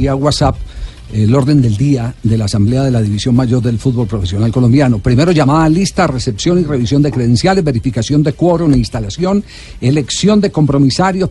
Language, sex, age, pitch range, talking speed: Spanish, male, 50-69, 115-155 Hz, 180 wpm